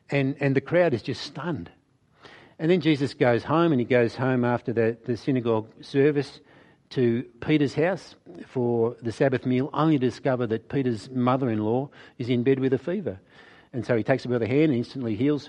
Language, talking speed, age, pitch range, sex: English, 200 wpm, 60-79, 110-140 Hz, male